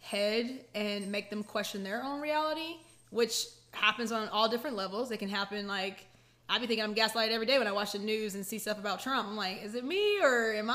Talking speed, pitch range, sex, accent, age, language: 235 wpm, 205-250 Hz, female, American, 20-39, English